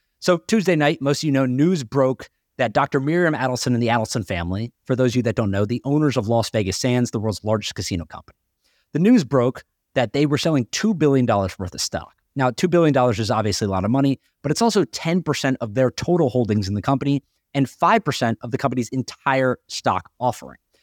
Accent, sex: American, male